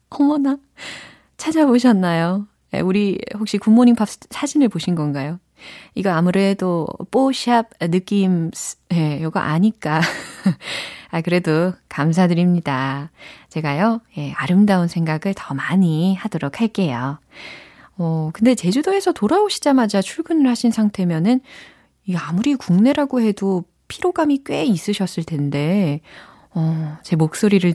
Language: Korean